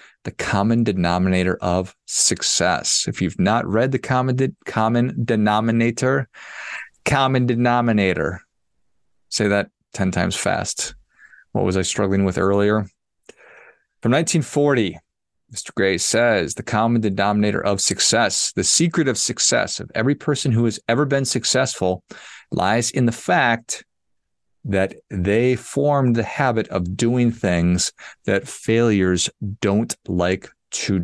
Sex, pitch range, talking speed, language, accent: male, 95-120 Hz, 130 wpm, English, American